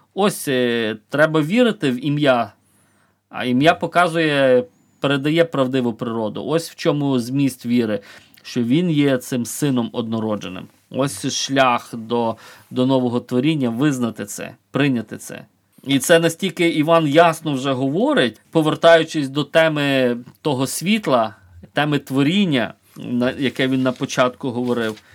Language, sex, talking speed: Ukrainian, male, 125 wpm